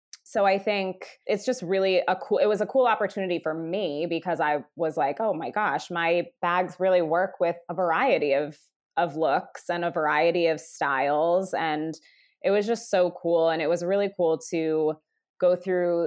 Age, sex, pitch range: 20-39, female, 165-190 Hz